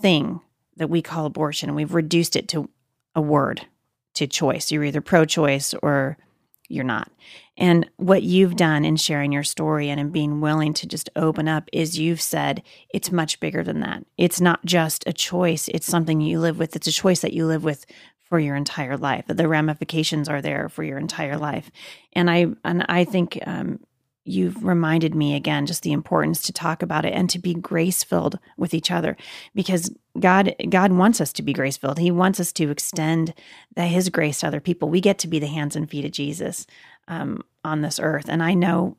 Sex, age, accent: female, 30-49, American